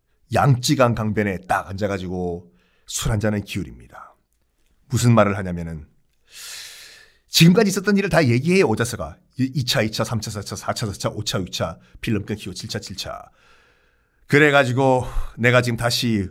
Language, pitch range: Korean, 95-135 Hz